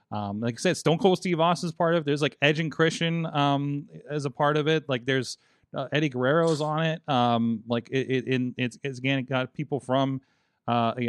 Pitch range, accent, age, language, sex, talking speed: 115-145 Hz, American, 30-49, English, male, 225 wpm